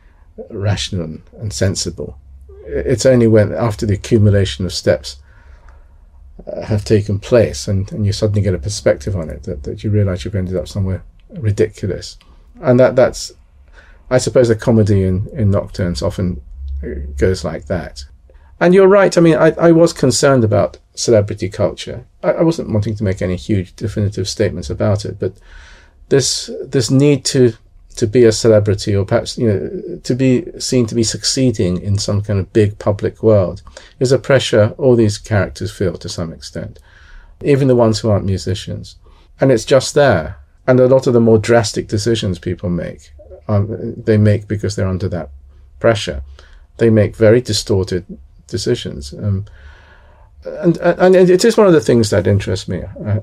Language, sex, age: English, male, 40-59